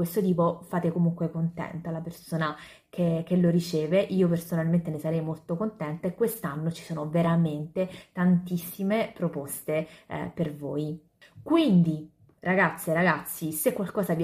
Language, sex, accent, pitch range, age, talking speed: Italian, female, native, 165-210 Hz, 20-39, 135 wpm